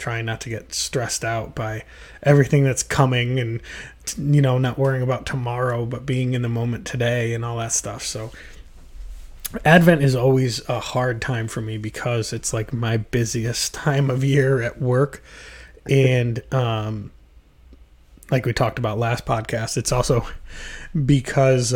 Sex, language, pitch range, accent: male, English, 115-140 Hz, American